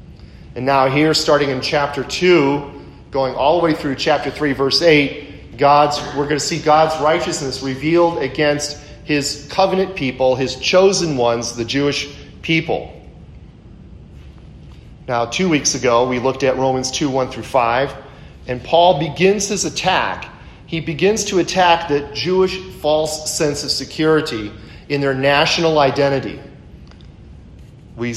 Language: English